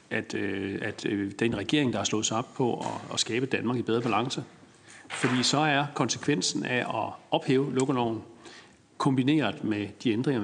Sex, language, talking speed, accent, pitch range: male, Danish, 185 wpm, native, 110-140 Hz